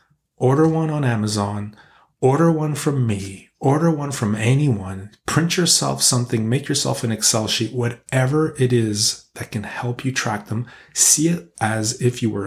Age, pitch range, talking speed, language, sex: 30-49, 105-130 Hz, 170 wpm, English, male